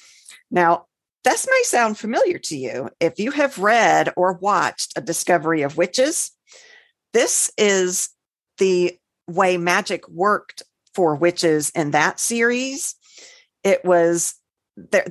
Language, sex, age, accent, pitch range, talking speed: English, female, 50-69, American, 160-205 Hz, 125 wpm